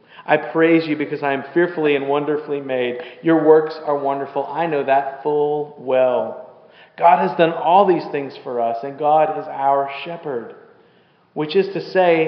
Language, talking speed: English, 175 wpm